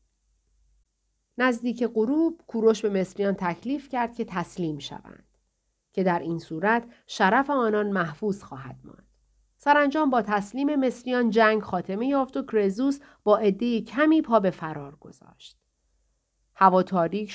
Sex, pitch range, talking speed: female, 175-230 Hz, 130 wpm